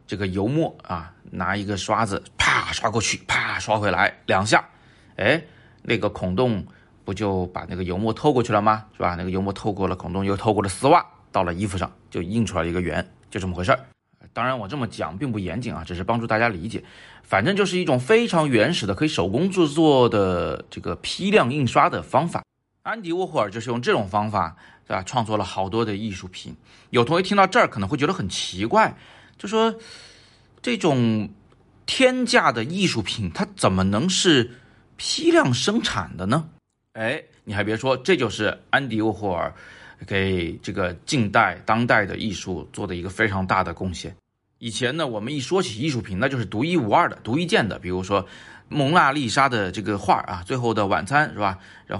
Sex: male